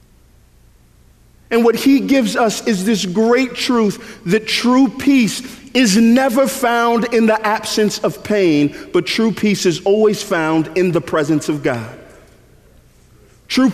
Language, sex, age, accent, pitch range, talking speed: English, male, 50-69, American, 155-215 Hz, 140 wpm